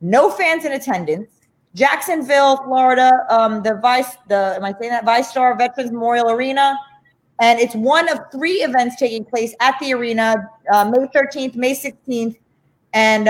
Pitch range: 210-265 Hz